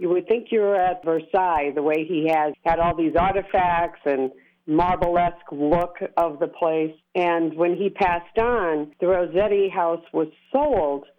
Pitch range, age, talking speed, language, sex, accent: 165-225 Hz, 50-69, 160 wpm, English, female, American